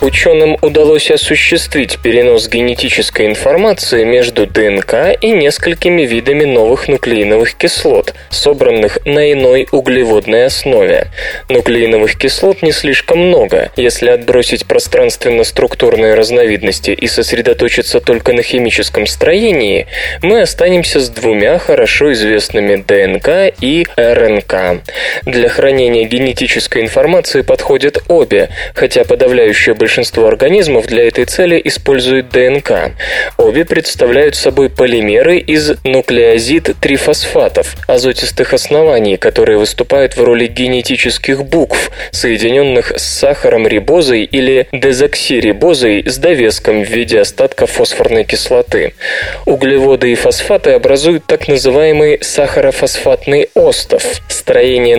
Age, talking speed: 20-39, 105 wpm